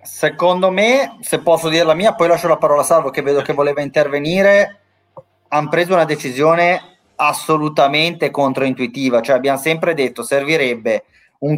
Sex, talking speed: male, 160 wpm